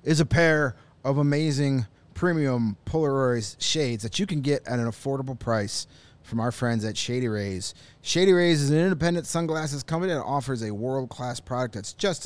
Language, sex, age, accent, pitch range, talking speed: English, male, 30-49, American, 115-155 Hz, 175 wpm